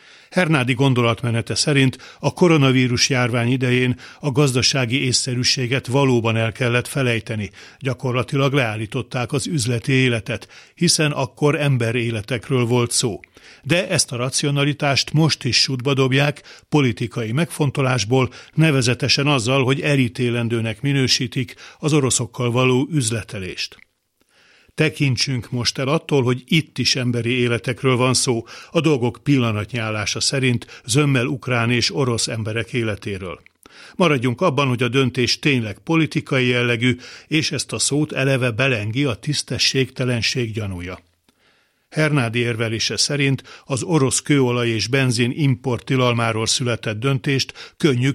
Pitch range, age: 120-140 Hz, 60-79